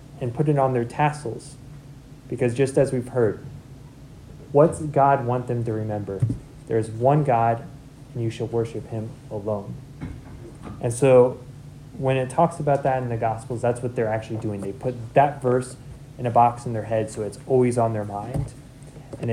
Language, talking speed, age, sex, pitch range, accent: English, 185 wpm, 20-39, male, 125-140 Hz, American